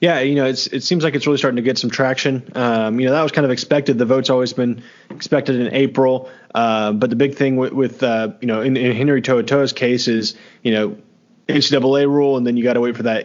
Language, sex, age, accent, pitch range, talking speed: English, male, 20-39, American, 115-135 Hz, 265 wpm